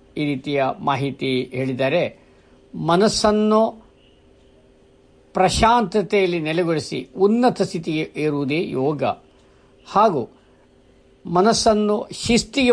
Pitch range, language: 135-185 Hz, Kannada